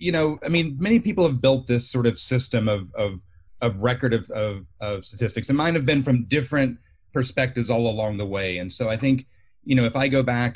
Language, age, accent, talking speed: English, 30-49, American, 235 wpm